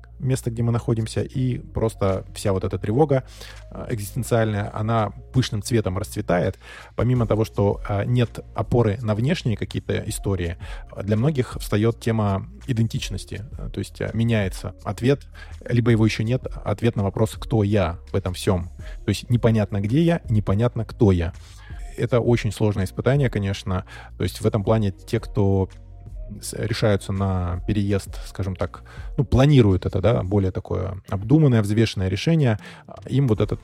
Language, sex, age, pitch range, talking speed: Russian, male, 20-39, 95-115 Hz, 145 wpm